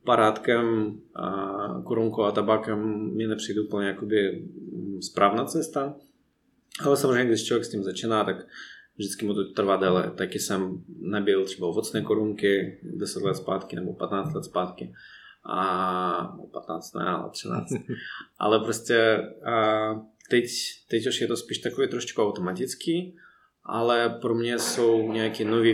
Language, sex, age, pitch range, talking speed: Czech, male, 20-39, 100-110 Hz, 135 wpm